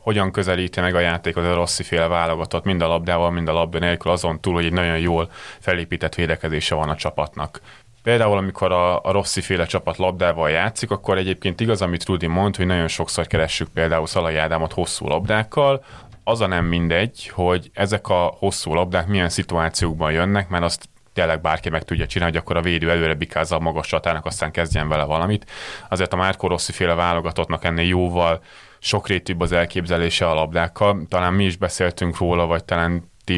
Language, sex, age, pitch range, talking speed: Hungarian, male, 30-49, 85-95 Hz, 180 wpm